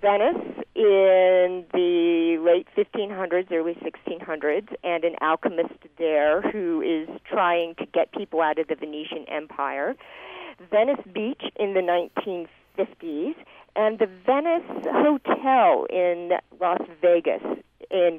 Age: 50-69